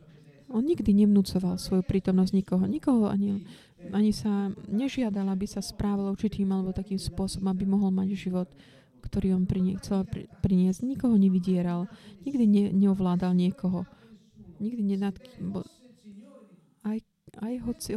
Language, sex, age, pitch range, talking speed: Slovak, female, 20-39, 190-225 Hz, 115 wpm